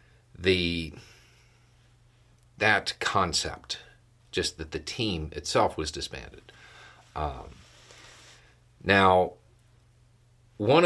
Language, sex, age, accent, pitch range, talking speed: English, male, 40-59, American, 85-115 Hz, 70 wpm